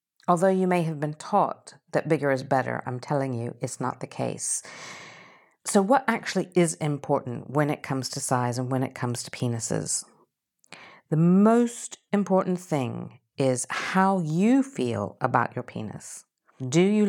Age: 50-69